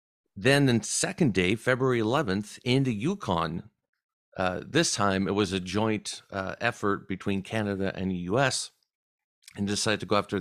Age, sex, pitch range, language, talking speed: 50-69, male, 95-120 Hz, English, 160 wpm